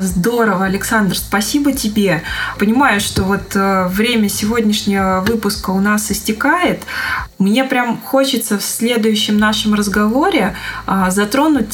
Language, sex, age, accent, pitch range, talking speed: Russian, female, 20-39, native, 195-240 Hz, 105 wpm